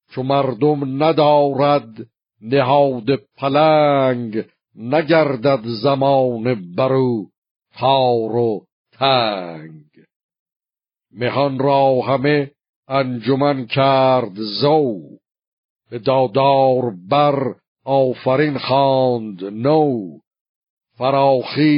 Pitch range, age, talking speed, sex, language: 120-140 Hz, 60-79, 65 wpm, male, Persian